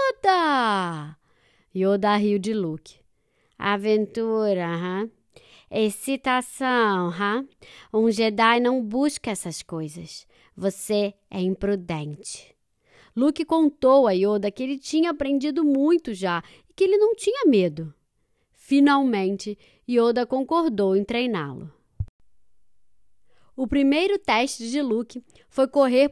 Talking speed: 100 wpm